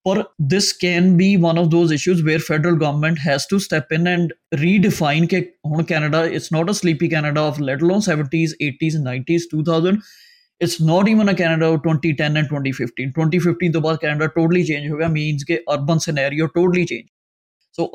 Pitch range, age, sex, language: 145-175 Hz, 20-39, male, Punjabi